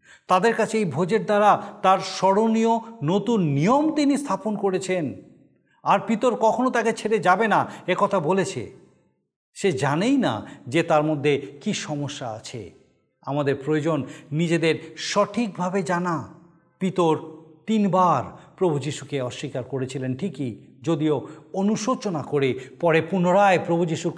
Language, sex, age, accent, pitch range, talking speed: Bengali, male, 50-69, native, 135-190 Hz, 120 wpm